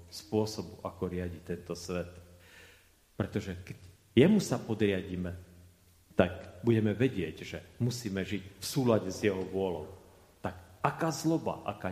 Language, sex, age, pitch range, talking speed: Slovak, male, 40-59, 90-115 Hz, 125 wpm